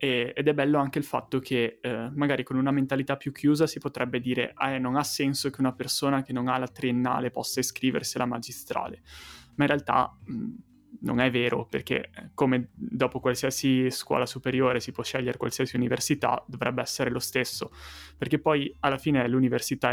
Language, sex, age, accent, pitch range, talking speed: Italian, male, 20-39, native, 125-140 Hz, 180 wpm